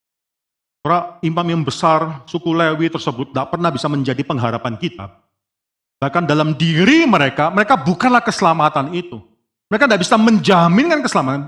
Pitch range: 130-195 Hz